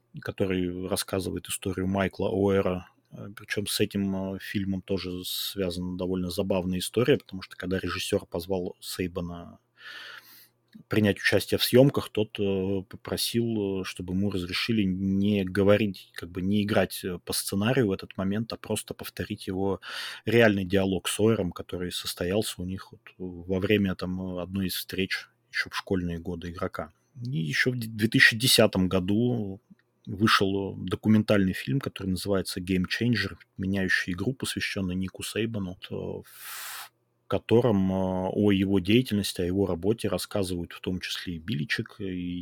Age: 20-39